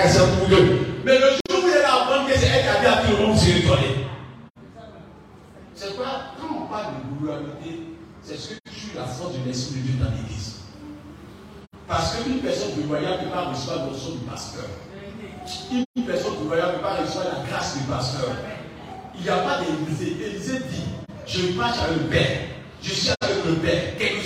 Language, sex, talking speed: French, male, 195 wpm